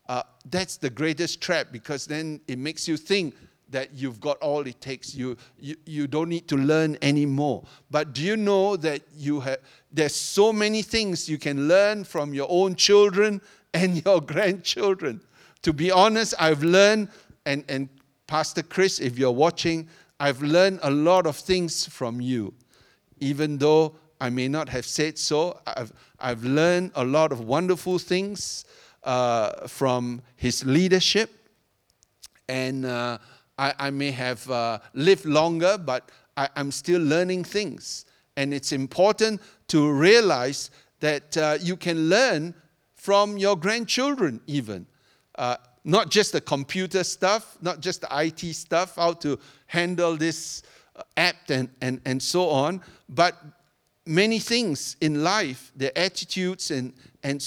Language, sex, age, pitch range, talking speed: English, male, 60-79, 140-180 Hz, 150 wpm